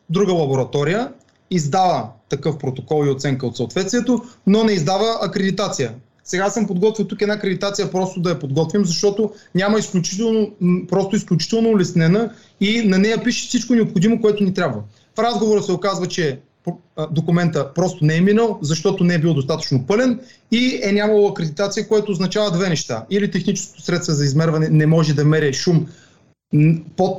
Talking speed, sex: 160 wpm, male